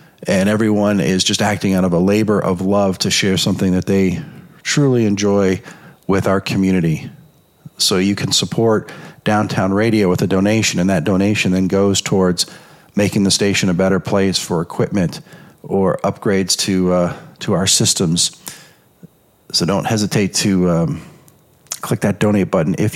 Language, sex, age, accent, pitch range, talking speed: English, male, 40-59, American, 95-140 Hz, 160 wpm